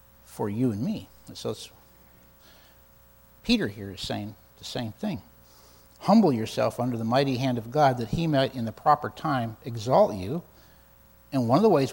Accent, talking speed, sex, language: American, 180 wpm, male, English